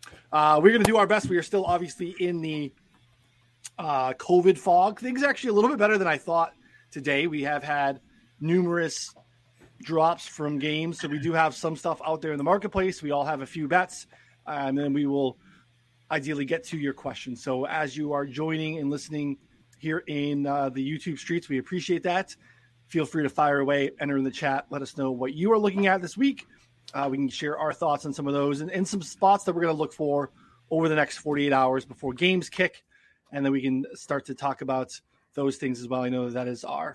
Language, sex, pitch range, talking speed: English, male, 135-170 Hz, 225 wpm